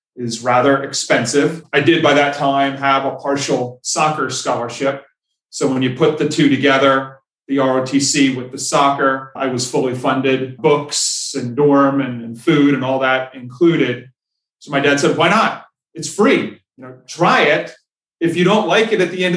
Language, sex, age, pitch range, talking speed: English, male, 30-49, 130-150 Hz, 180 wpm